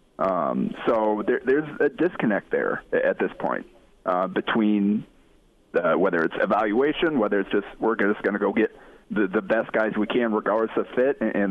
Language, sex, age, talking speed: English, male, 30-49, 190 wpm